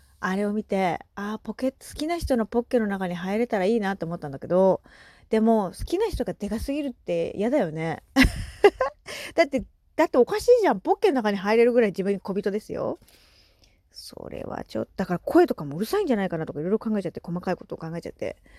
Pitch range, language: 175-245 Hz, Japanese